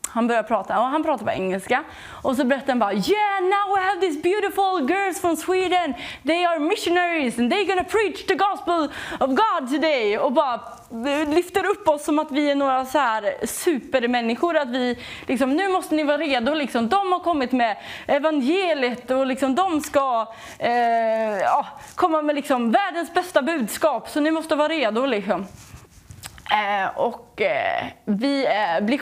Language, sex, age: English, female, 30-49